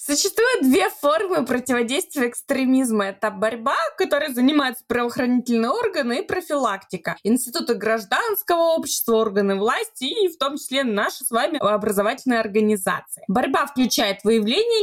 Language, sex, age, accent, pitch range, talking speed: Russian, female, 20-39, native, 225-295 Hz, 120 wpm